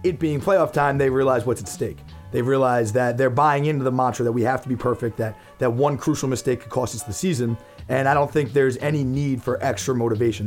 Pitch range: 115-140 Hz